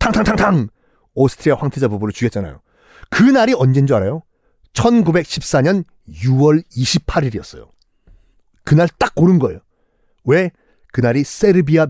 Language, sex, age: Korean, male, 40-59